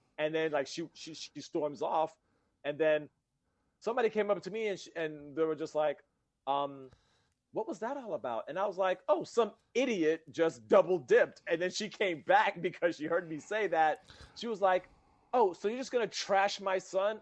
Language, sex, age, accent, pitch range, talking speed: English, male, 40-59, American, 145-210 Hz, 210 wpm